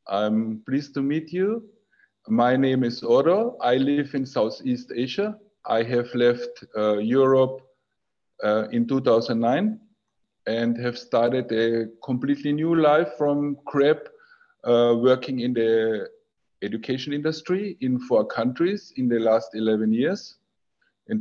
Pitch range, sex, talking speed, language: 120-155 Hz, male, 130 wpm, English